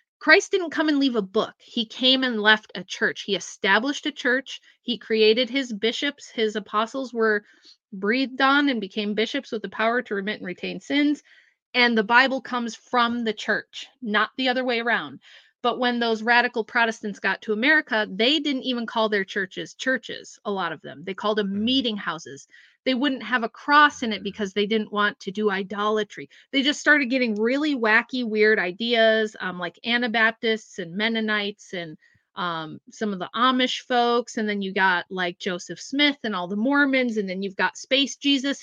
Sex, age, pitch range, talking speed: female, 30-49, 210-265 Hz, 195 wpm